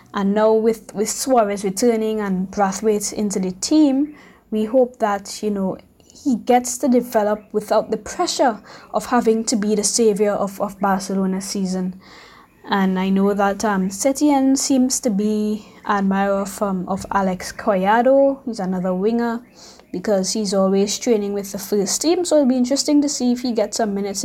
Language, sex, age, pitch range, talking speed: English, female, 20-39, 195-245 Hz, 175 wpm